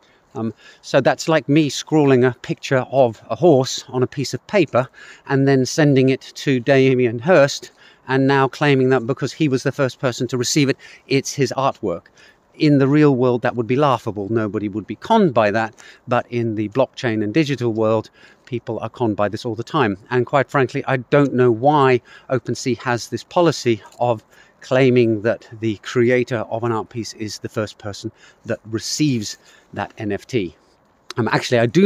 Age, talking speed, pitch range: 40-59, 190 wpm, 115-140 Hz